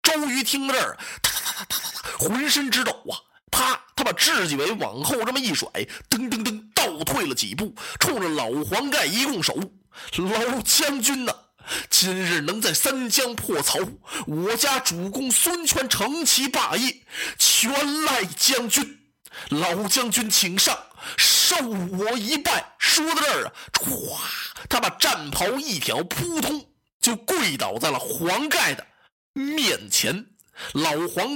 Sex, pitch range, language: male, 220-280 Hz, Chinese